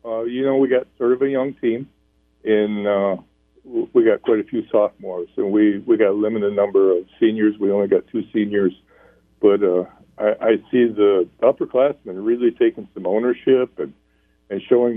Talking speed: 185 wpm